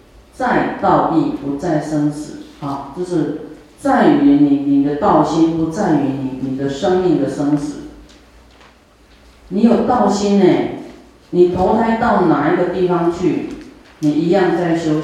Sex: female